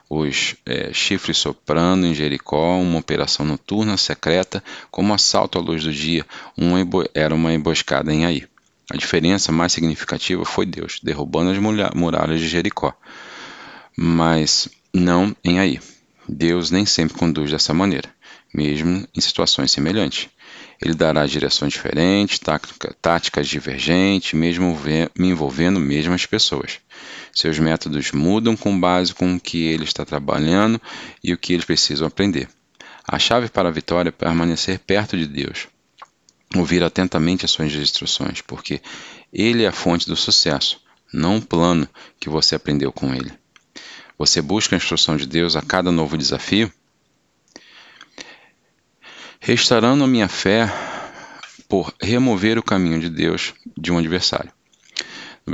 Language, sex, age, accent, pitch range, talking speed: Portuguese, male, 40-59, Brazilian, 80-95 Hz, 145 wpm